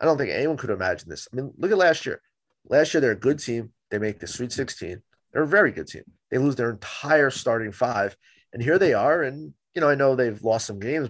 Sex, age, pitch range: male, 30-49, 105-125 Hz